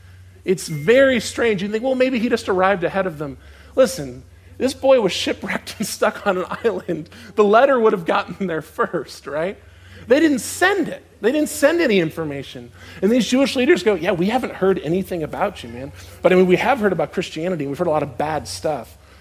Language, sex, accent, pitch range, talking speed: English, male, American, 145-210 Hz, 210 wpm